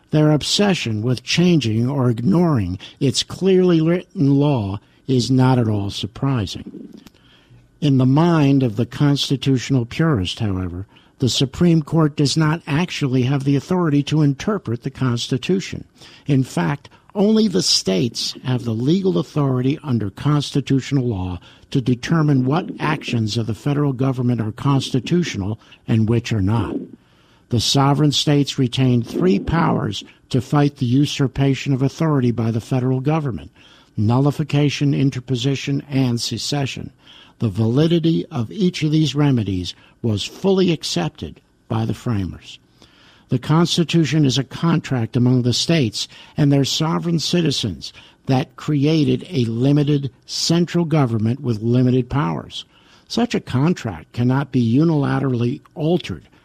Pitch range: 120-150 Hz